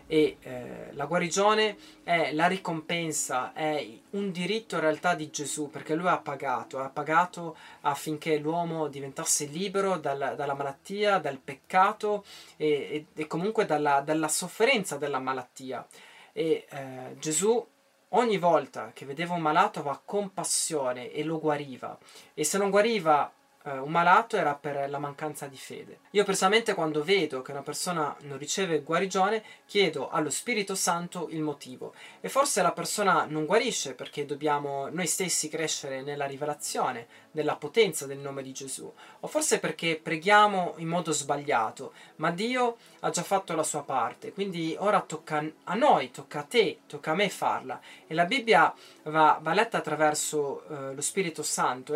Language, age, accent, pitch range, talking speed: Italian, 20-39, native, 145-195 Hz, 155 wpm